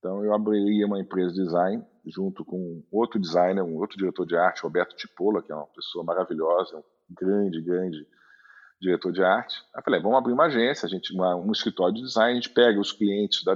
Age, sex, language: 40-59, male, Portuguese